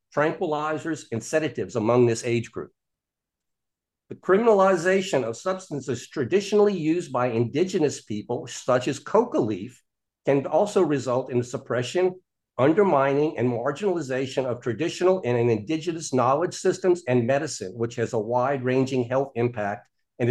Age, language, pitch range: 50-69, English, 125-165 Hz